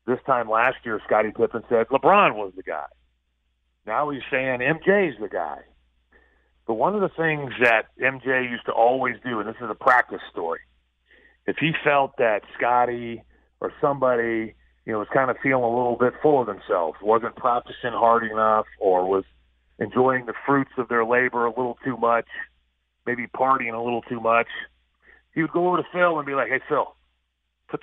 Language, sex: English, male